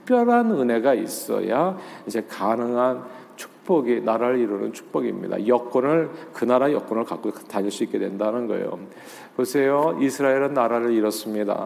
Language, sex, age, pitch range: Korean, male, 50-69, 120-165 Hz